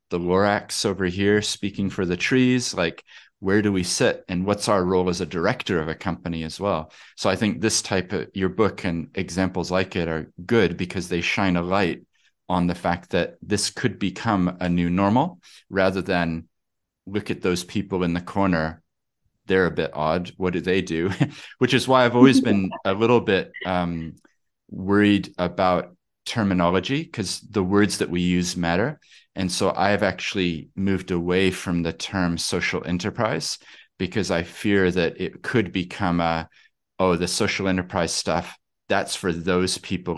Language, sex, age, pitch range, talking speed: English, male, 30-49, 85-100 Hz, 180 wpm